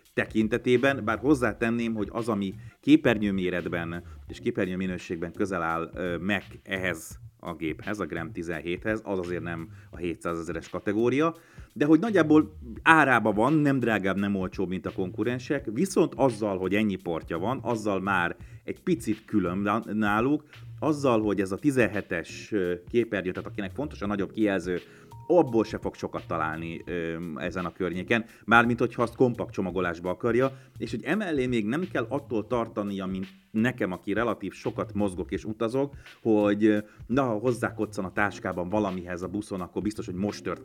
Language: Hungarian